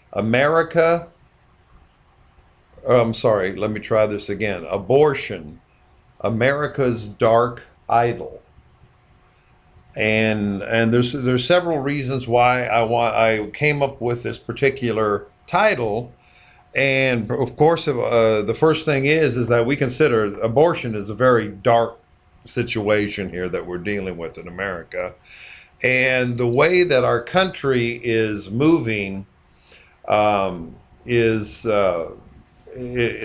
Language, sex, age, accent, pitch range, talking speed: English, male, 50-69, American, 110-135 Hz, 115 wpm